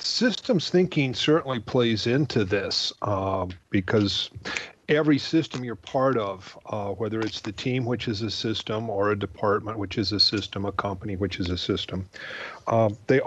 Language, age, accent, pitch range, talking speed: English, 40-59, American, 110-135 Hz, 165 wpm